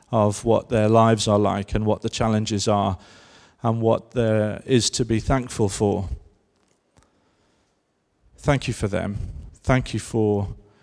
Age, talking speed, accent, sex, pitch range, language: 40-59, 145 wpm, British, male, 105-120 Hz, English